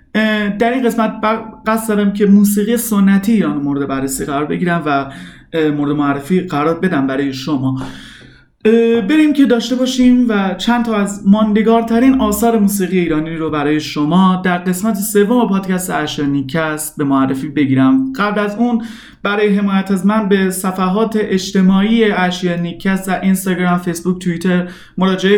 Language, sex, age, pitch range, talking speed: Persian, male, 30-49, 165-215 Hz, 145 wpm